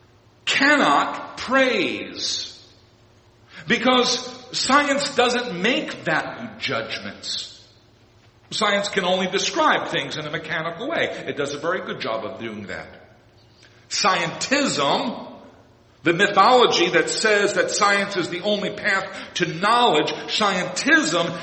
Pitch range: 125-200 Hz